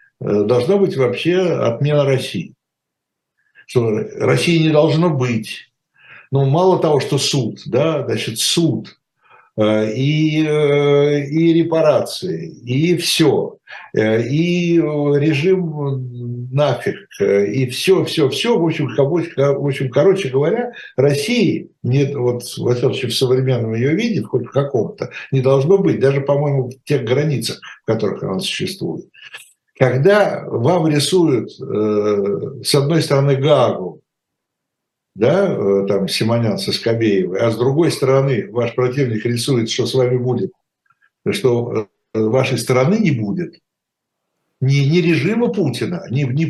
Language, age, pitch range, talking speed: Russian, 60-79, 120-165 Hz, 115 wpm